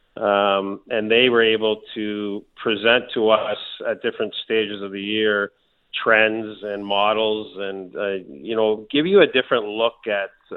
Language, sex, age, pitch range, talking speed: English, male, 40-59, 100-115 Hz, 160 wpm